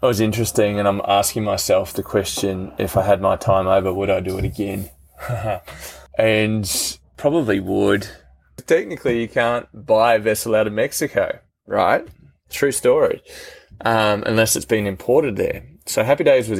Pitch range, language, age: 95-115 Hz, English, 20-39